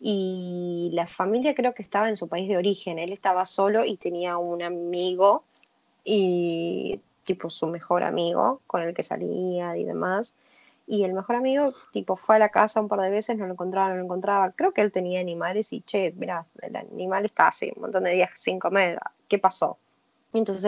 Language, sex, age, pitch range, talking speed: Spanish, female, 20-39, 180-225 Hz, 200 wpm